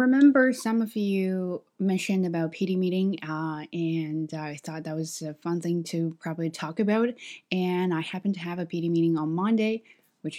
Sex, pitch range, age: female, 165-225 Hz, 20-39